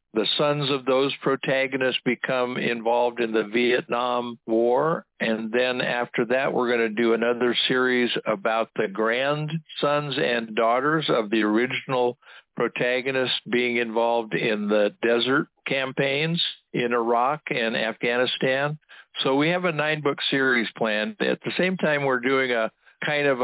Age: 60-79